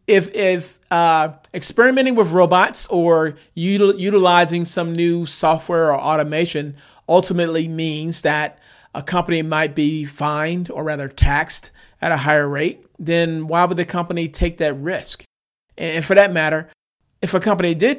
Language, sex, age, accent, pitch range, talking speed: English, male, 40-59, American, 155-185 Hz, 150 wpm